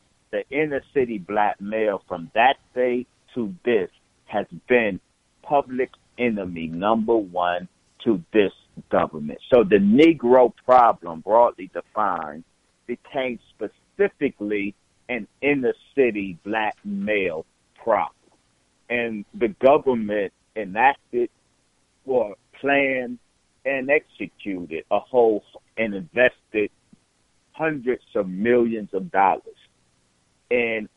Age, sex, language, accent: 60-79, male, English, American